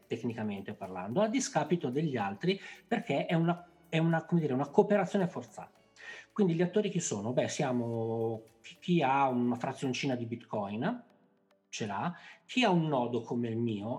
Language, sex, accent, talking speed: Italian, male, native, 165 wpm